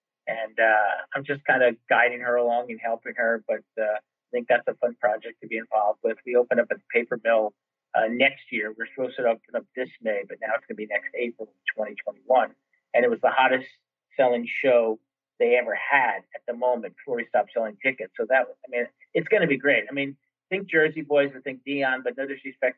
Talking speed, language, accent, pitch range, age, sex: 235 wpm, English, American, 120-150 Hz, 40-59, male